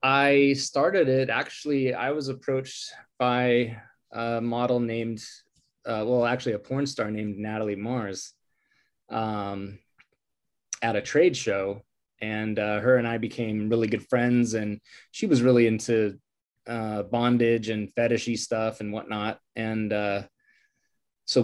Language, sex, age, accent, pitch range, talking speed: English, male, 20-39, American, 105-125 Hz, 135 wpm